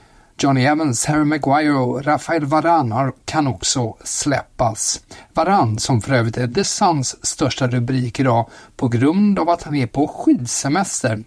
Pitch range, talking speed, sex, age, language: 125-160 Hz, 150 wpm, male, 60-79, Swedish